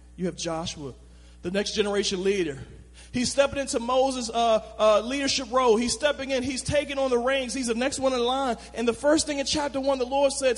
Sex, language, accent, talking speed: male, English, American, 220 wpm